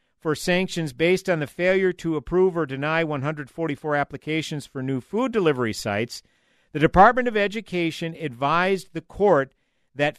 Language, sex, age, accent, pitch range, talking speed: English, male, 50-69, American, 140-185 Hz, 145 wpm